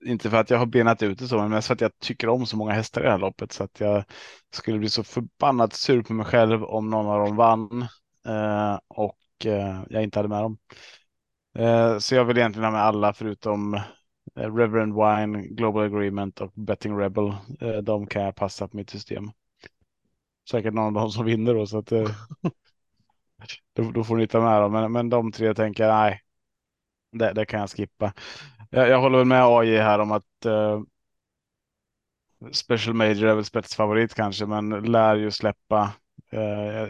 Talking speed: 195 wpm